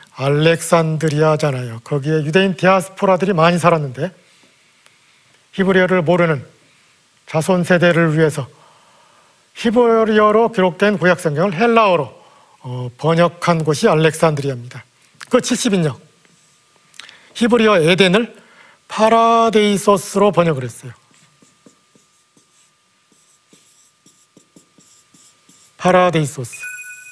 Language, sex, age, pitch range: Korean, male, 40-59, 155-210 Hz